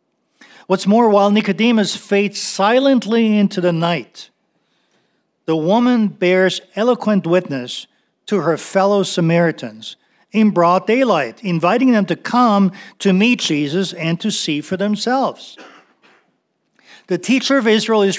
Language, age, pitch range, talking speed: English, 50-69, 165-210 Hz, 125 wpm